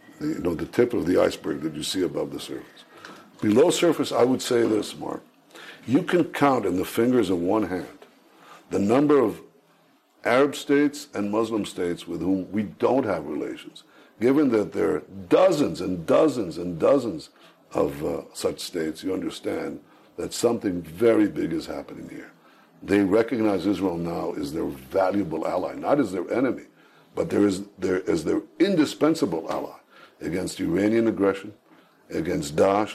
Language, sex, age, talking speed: English, male, 60-79, 165 wpm